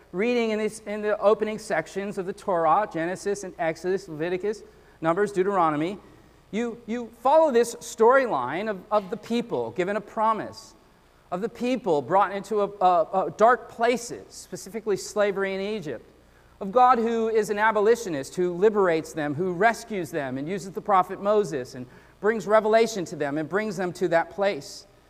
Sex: male